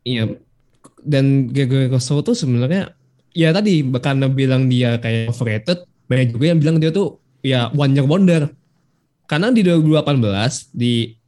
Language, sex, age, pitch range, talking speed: Indonesian, male, 20-39, 120-155 Hz, 145 wpm